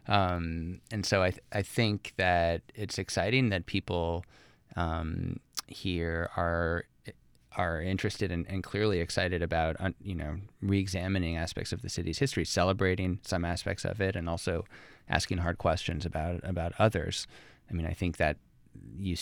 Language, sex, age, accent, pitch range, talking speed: English, male, 20-39, American, 80-95 Hz, 155 wpm